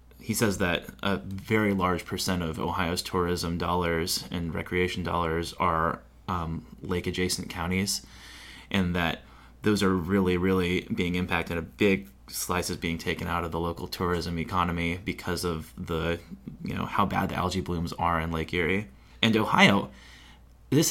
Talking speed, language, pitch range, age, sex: 160 wpm, English, 90-110 Hz, 20-39, male